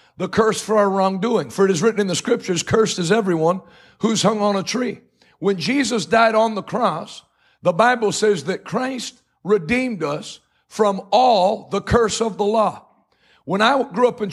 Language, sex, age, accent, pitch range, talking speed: English, male, 50-69, American, 195-230 Hz, 190 wpm